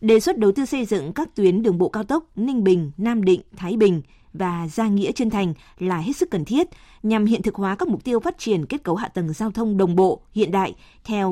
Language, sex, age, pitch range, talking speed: Vietnamese, female, 20-39, 185-225 Hz, 255 wpm